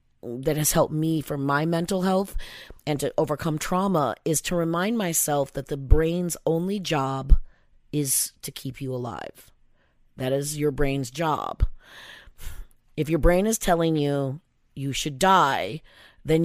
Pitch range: 150-205 Hz